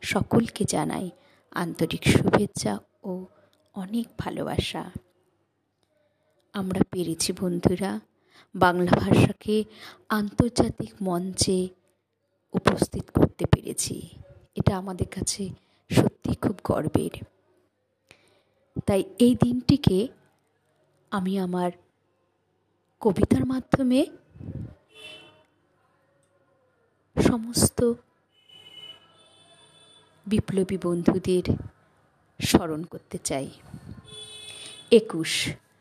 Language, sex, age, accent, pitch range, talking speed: Bengali, female, 30-49, native, 185-240 Hz, 60 wpm